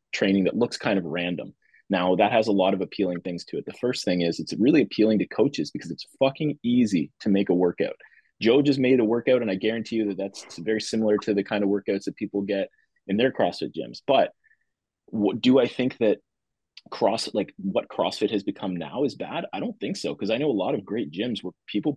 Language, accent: English, American